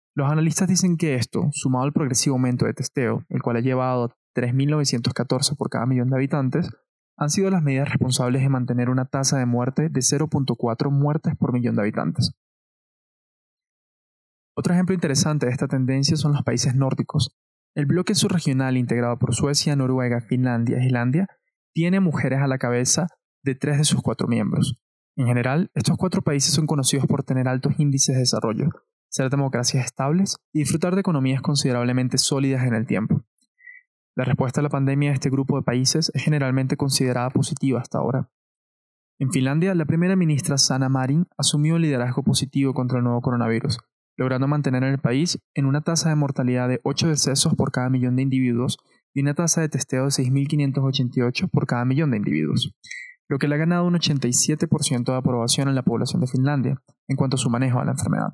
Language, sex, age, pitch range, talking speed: Spanish, male, 20-39, 125-155 Hz, 185 wpm